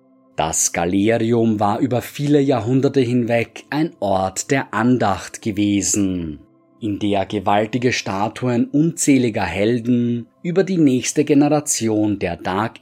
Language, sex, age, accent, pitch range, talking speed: German, male, 20-39, German, 100-135 Hz, 110 wpm